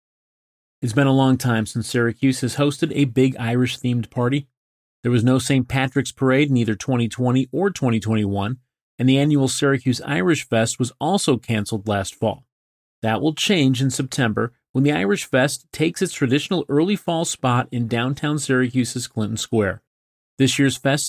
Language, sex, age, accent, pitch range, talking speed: English, male, 30-49, American, 115-150 Hz, 165 wpm